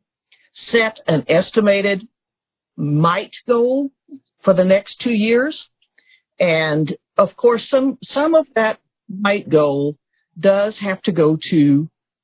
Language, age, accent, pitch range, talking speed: English, 50-69, American, 160-225 Hz, 120 wpm